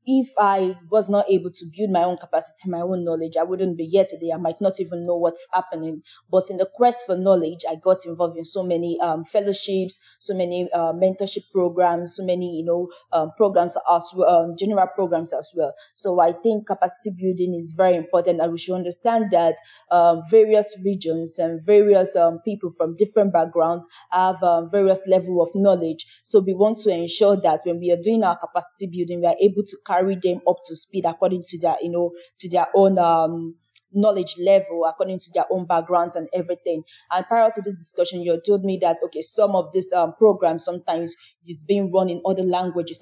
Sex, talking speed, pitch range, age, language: female, 205 wpm, 170-200 Hz, 20-39, English